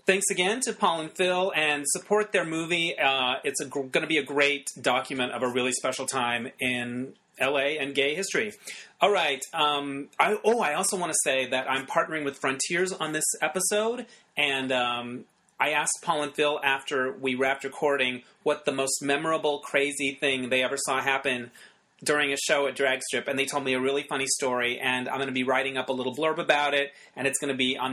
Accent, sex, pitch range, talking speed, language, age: American, male, 130-160 Hz, 210 wpm, English, 30-49